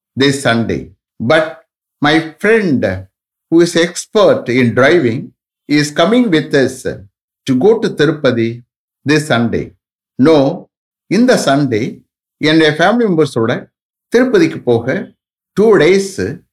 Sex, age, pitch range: male, 60-79, 120-175 Hz